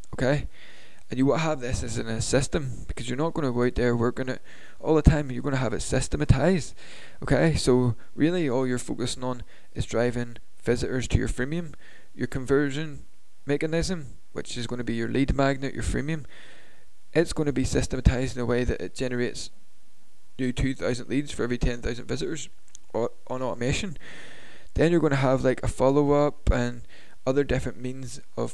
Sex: male